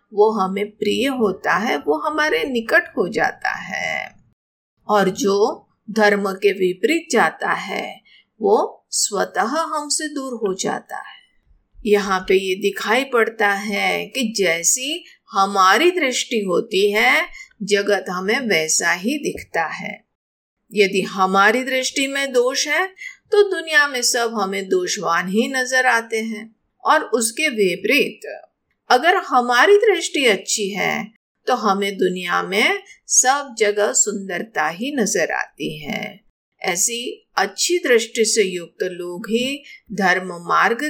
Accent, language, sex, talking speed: native, Hindi, female, 130 wpm